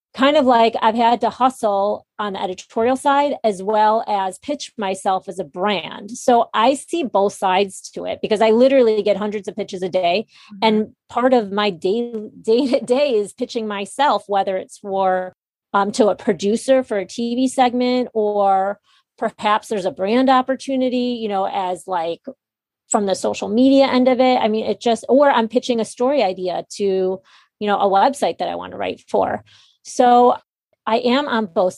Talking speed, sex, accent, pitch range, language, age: 190 wpm, female, American, 200-245 Hz, English, 30-49